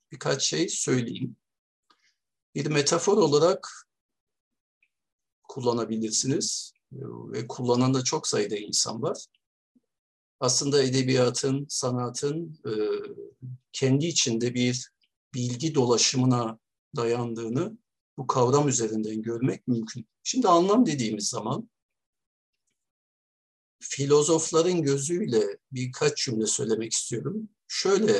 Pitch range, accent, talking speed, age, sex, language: 120-150 Hz, native, 85 wpm, 60-79, male, Turkish